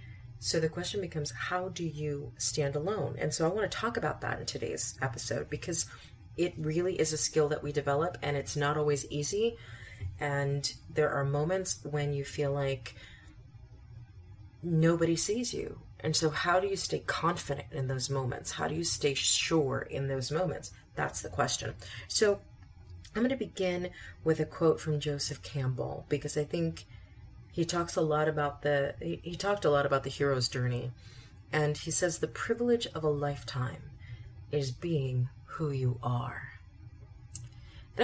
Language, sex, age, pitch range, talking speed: English, female, 30-49, 115-155 Hz, 170 wpm